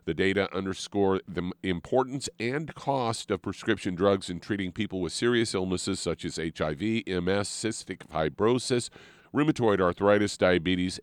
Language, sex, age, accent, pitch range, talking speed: English, male, 50-69, American, 90-110 Hz, 135 wpm